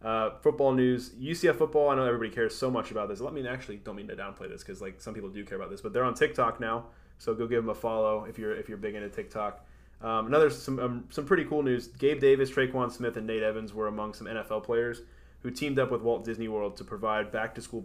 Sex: male